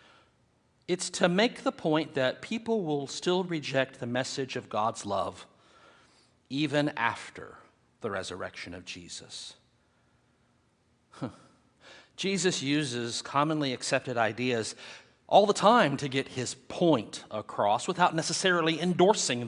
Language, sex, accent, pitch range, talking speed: English, male, American, 145-210 Hz, 115 wpm